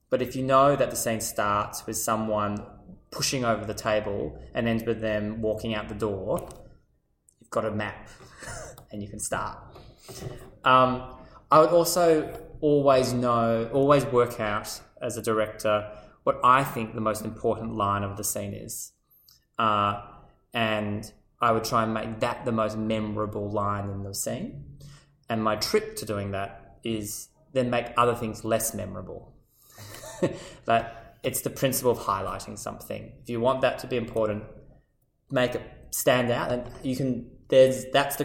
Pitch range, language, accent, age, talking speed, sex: 105-125 Hz, English, Australian, 20-39, 165 wpm, male